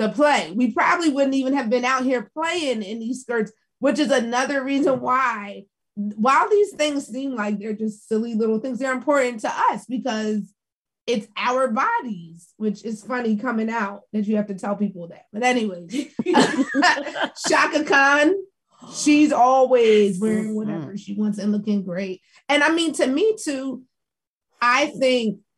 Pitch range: 205-255 Hz